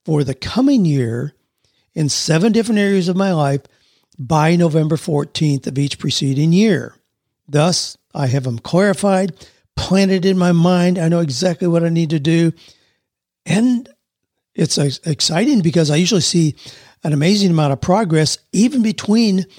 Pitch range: 145-185 Hz